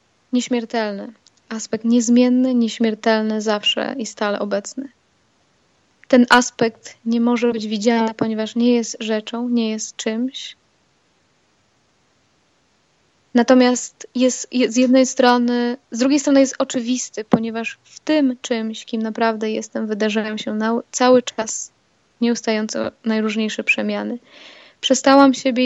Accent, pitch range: native, 225-250 Hz